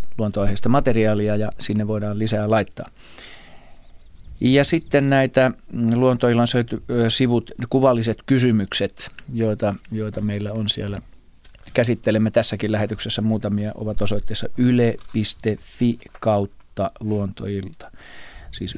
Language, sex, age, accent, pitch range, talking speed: Finnish, male, 40-59, native, 105-125 Hz, 95 wpm